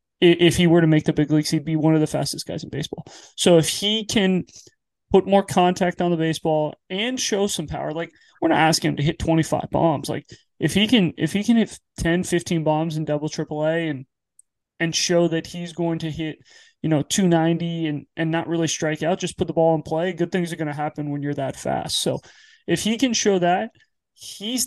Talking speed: 235 wpm